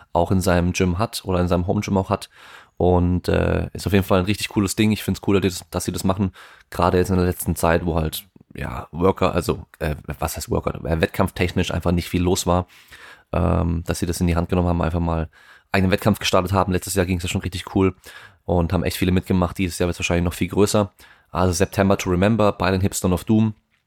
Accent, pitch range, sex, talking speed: German, 85-100 Hz, male, 240 wpm